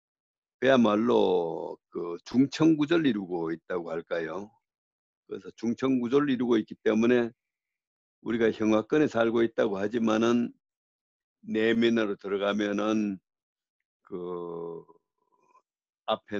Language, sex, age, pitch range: Korean, male, 60-79, 95-145 Hz